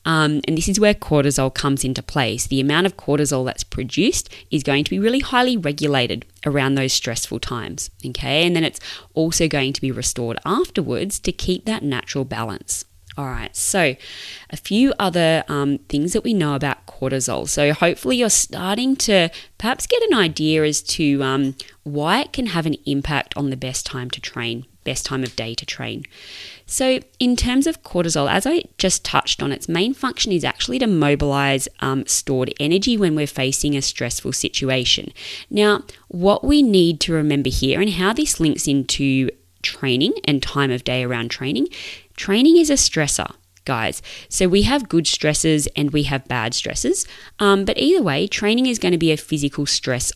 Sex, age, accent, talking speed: female, 20-39, Australian, 185 wpm